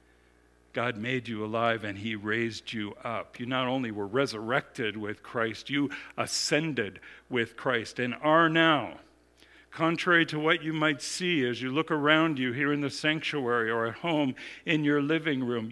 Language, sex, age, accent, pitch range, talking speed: English, male, 50-69, American, 115-155 Hz, 170 wpm